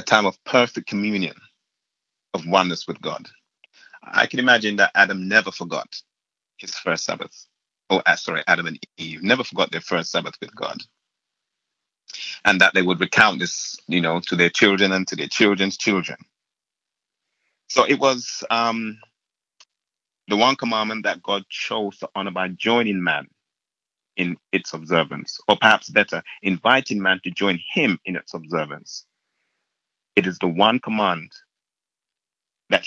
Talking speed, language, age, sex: 150 wpm, English, 30-49, male